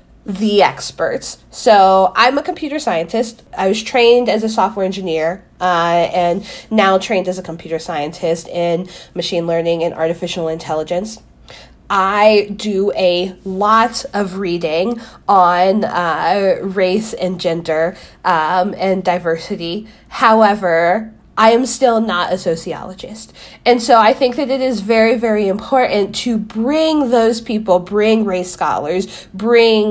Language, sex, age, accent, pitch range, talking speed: English, female, 20-39, American, 180-230 Hz, 135 wpm